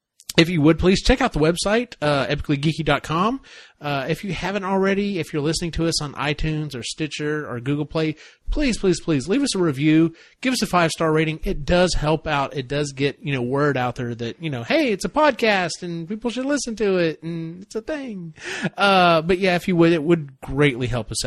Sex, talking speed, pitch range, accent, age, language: male, 225 wpm, 140-185 Hz, American, 30-49, English